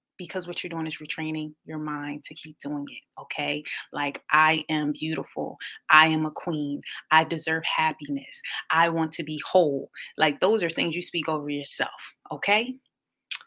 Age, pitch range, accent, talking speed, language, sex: 20-39, 155-190 Hz, American, 170 wpm, English, female